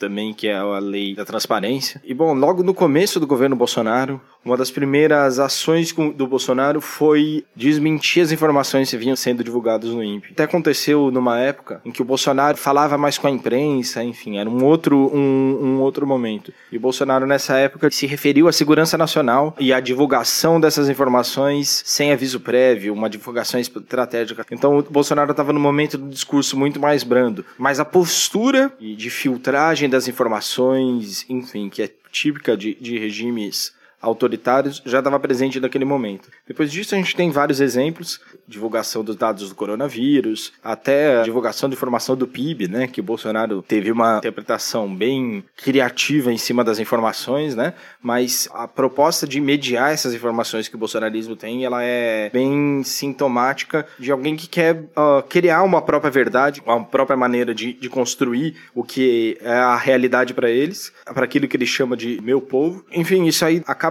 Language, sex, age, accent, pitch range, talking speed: Portuguese, male, 20-39, Brazilian, 120-145 Hz, 175 wpm